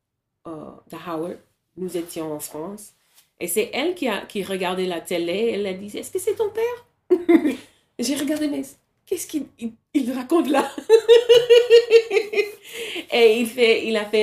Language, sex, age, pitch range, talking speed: French, female, 30-49, 170-275 Hz, 170 wpm